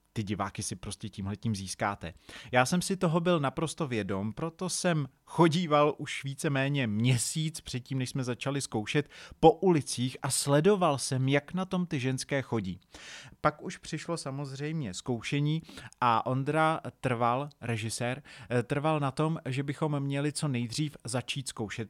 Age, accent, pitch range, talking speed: 30-49, native, 115-150 Hz, 150 wpm